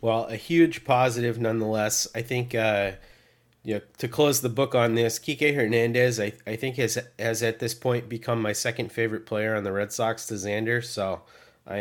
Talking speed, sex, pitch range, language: 190 wpm, male, 110-130 Hz, English